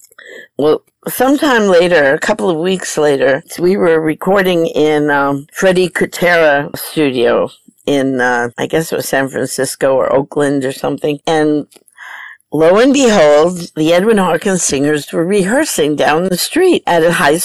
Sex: female